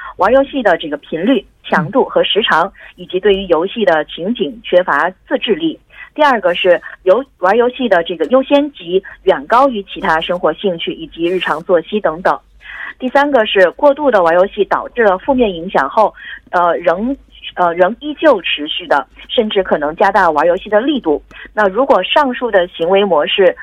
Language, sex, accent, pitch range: Korean, female, Chinese, 175-255 Hz